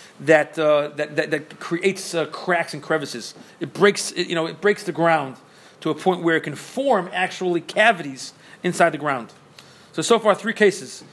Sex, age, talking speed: male, 40-59, 195 wpm